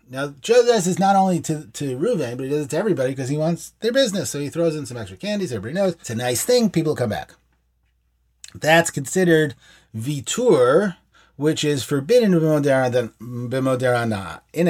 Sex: male